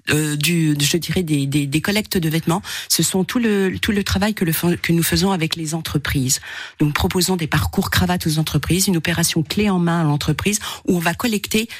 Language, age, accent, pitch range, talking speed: French, 40-59, French, 150-185 Hz, 220 wpm